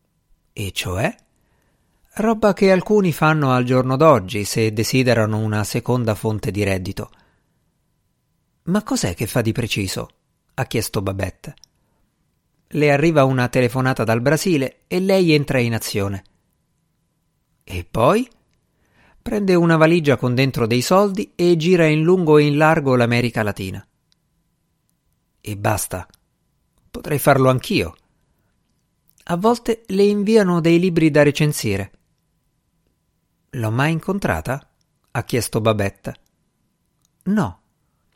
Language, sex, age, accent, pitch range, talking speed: Italian, male, 50-69, native, 115-170 Hz, 115 wpm